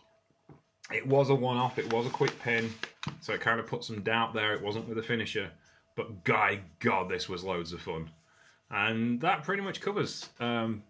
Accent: British